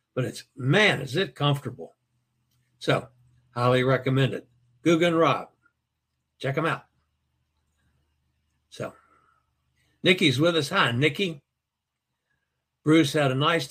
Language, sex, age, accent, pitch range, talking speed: English, male, 60-79, American, 120-135 Hz, 110 wpm